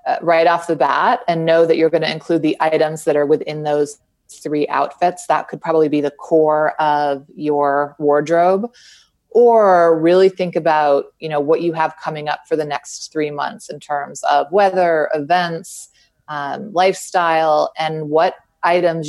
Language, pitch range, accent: English, 150-175 Hz, American